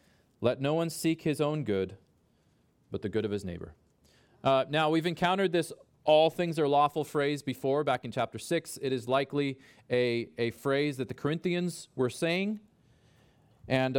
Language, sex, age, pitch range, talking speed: English, male, 40-59, 125-160 Hz, 170 wpm